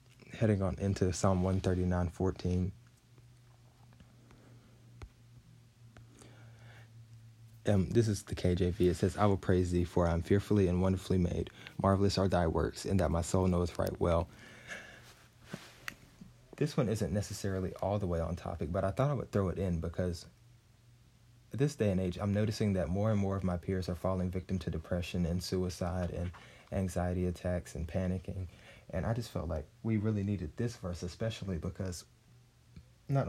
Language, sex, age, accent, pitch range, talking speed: English, male, 20-39, American, 90-105 Hz, 165 wpm